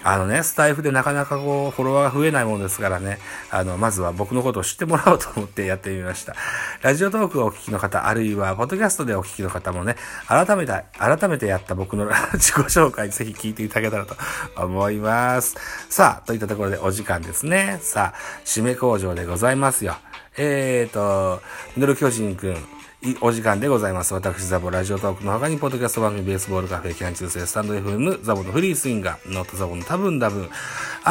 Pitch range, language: 95-130 Hz, Japanese